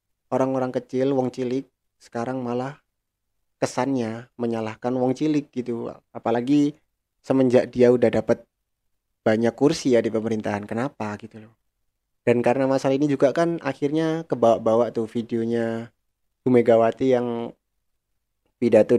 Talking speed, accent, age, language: 115 wpm, native, 20-39, Indonesian